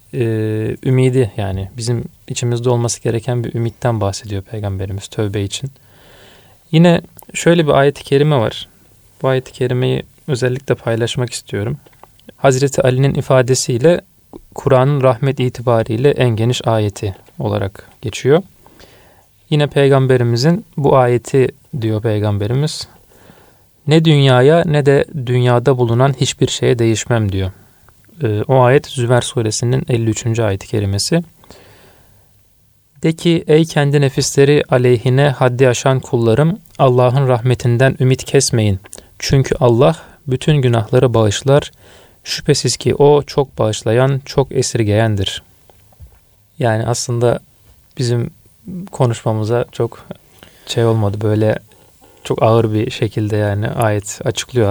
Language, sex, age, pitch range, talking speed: Turkish, male, 40-59, 105-135 Hz, 105 wpm